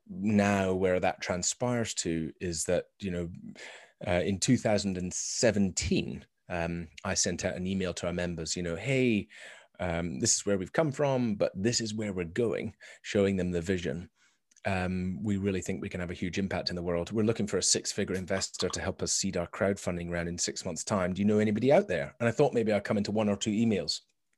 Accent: British